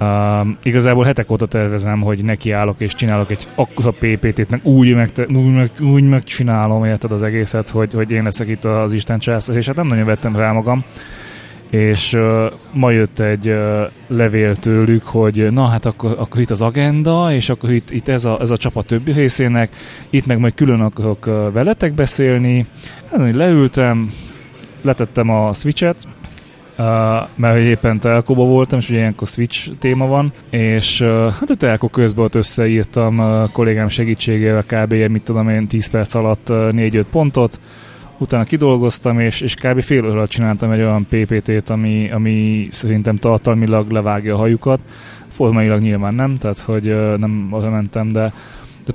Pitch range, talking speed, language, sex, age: 110-125 Hz, 170 wpm, Hungarian, male, 20-39